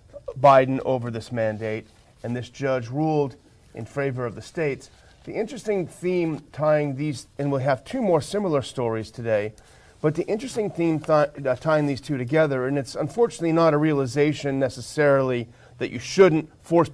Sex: male